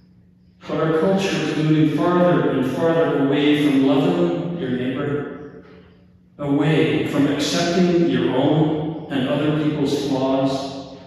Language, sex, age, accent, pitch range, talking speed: English, male, 40-59, American, 130-170 Hz, 115 wpm